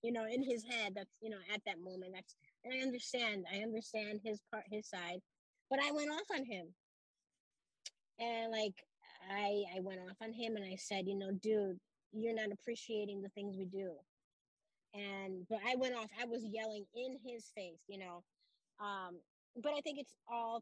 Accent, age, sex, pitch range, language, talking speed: American, 30-49, female, 190-230 Hz, English, 195 wpm